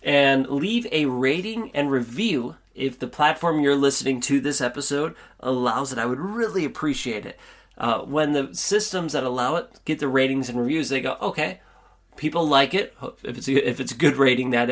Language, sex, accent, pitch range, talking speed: English, male, American, 125-180 Hz, 190 wpm